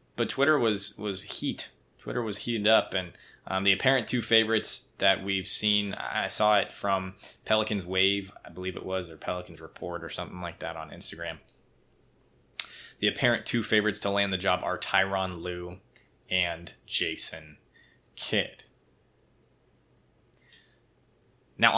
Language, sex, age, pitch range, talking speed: English, male, 20-39, 95-110 Hz, 145 wpm